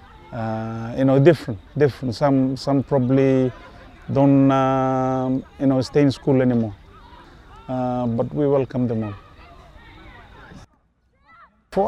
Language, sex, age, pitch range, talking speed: English, male, 30-49, 120-140 Hz, 115 wpm